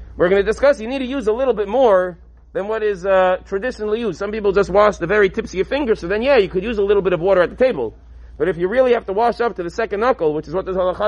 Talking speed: 315 wpm